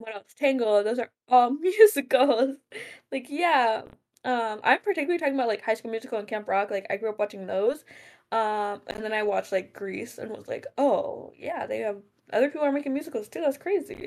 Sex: female